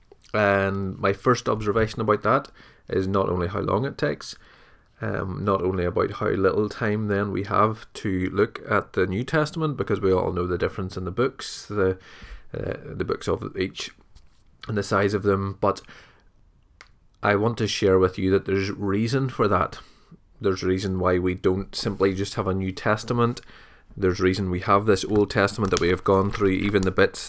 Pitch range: 95-105 Hz